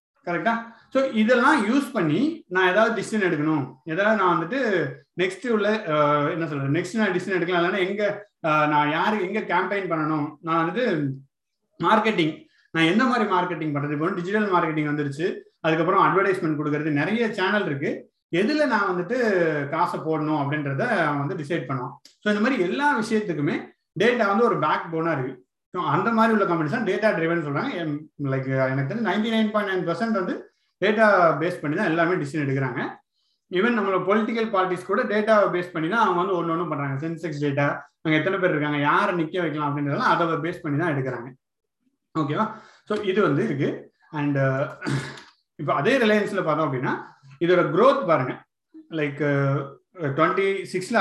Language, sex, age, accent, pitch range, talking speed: Tamil, male, 30-49, native, 150-210 Hz, 155 wpm